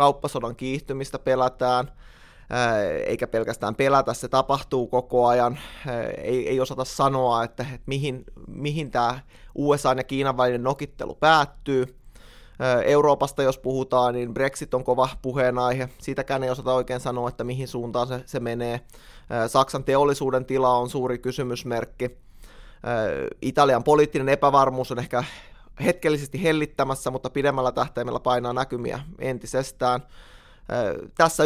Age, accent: 20-39, native